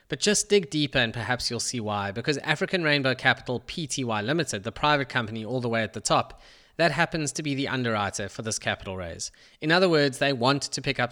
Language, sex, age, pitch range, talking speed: English, male, 20-39, 110-145 Hz, 225 wpm